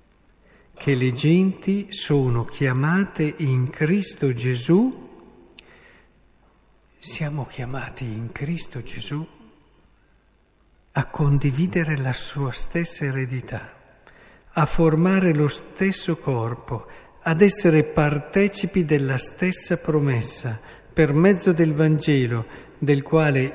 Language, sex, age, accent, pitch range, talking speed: Italian, male, 50-69, native, 125-160 Hz, 90 wpm